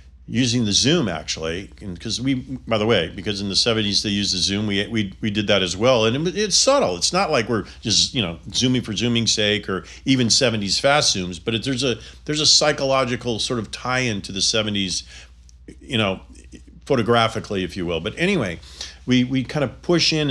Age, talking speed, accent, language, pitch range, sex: 40-59, 210 wpm, American, English, 95-130 Hz, male